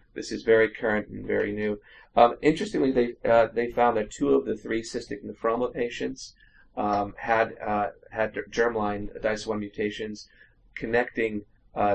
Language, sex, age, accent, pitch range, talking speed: English, male, 30-49, American, 105-115 Hz, 150 wpm